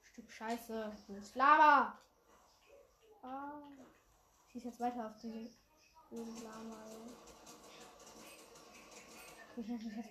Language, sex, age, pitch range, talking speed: English, female, 10-29, 230-300 Hz, 100 wpm